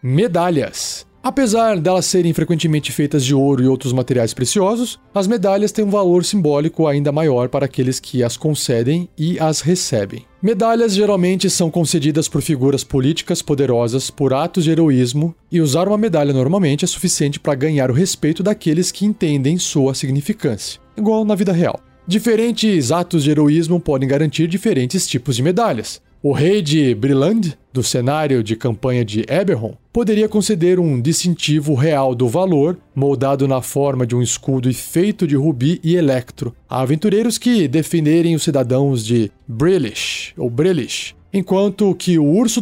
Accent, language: Brazilian, Portuguese